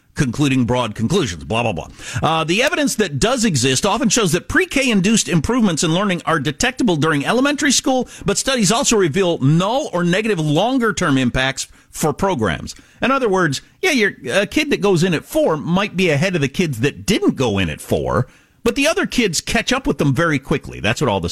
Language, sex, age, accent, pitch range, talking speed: English, male, 50-69, American, 135-200 Hz, 210 wpm